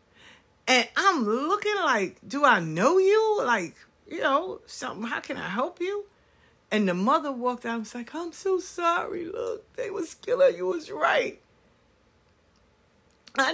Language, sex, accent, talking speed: English, female, American, 160 wpm